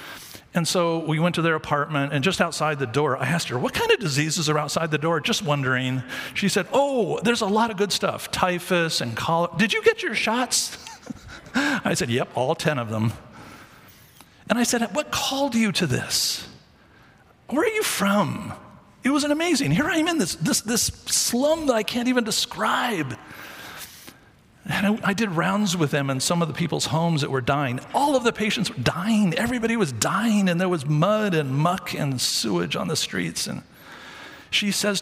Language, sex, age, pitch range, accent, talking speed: English, male, 50-69, 145-210 Hz, American, 200 wpm